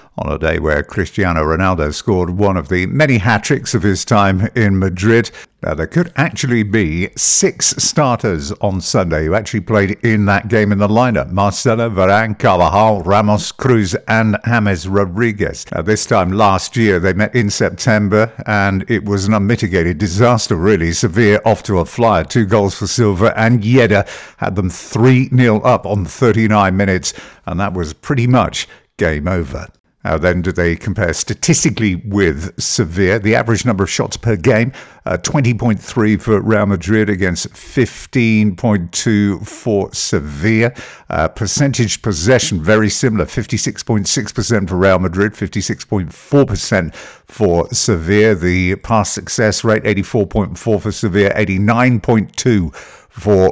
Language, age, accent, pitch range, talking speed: English, 50-69, British, 95-115 Hz, 145 wpm